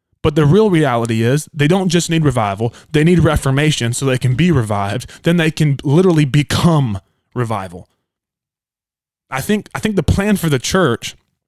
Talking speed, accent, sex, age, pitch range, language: 175 wpm, American, male, 20-39, 120-150 Hz, English